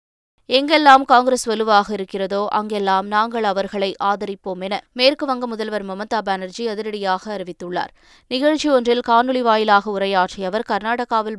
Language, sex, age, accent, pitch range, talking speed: Tamil, female, 20-39, native, 200-245 Hz, 115 wpm